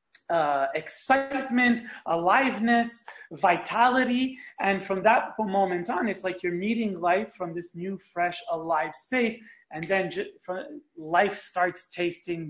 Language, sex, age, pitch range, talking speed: English, male, 30-49, 175-205 Hz, 120 wpm